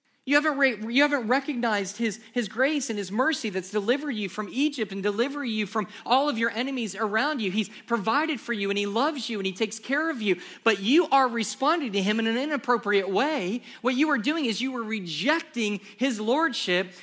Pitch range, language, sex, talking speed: 190-250 Hz, English, male, 215 wpm